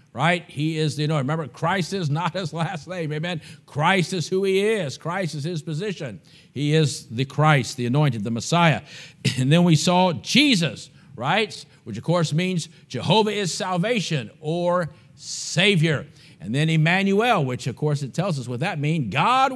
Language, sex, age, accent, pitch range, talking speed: English, male, 50-69, American, 145-175 Hz, 180 wpm